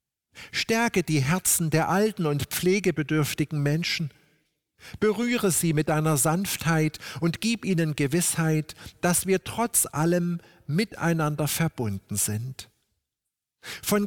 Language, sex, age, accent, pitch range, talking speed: German, male, 50-69, German, 140-180 Hz, 105 wpm